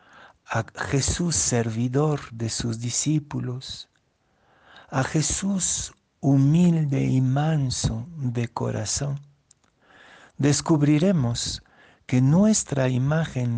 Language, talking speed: Spanish, 75 wpm